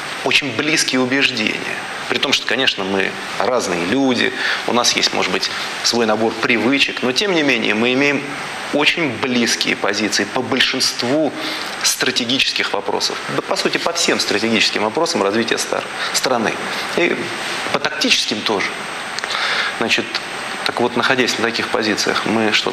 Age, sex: 30-49, male